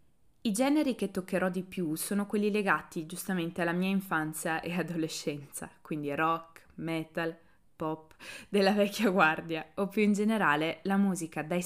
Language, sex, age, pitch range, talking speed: Italian, female, 20-39, 160-205 Hz, 150 wpm